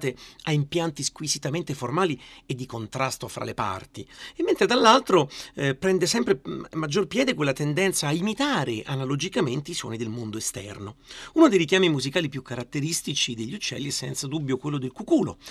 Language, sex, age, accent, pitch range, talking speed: Italian, male, 40-59, native, 125-175 Hz, 165 wpm